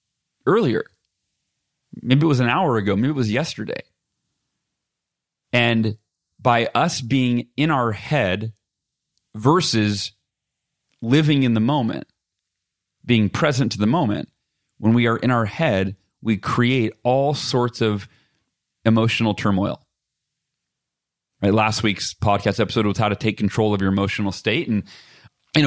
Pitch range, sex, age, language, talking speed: 105-125 Hz, male, 30-49, English, 135 wpm